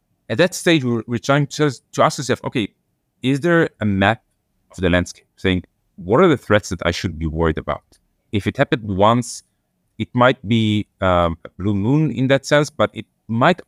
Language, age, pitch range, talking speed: English, 30-49, 90-130 Hz, 195 wpm